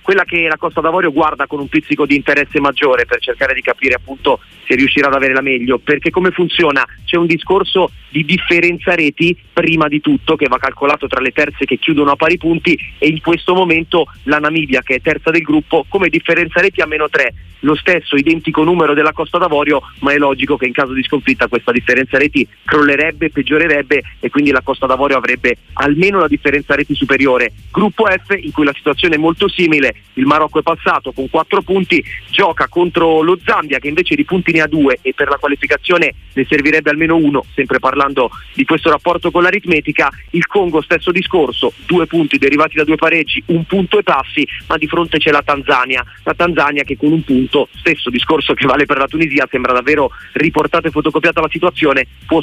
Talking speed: 205 wpm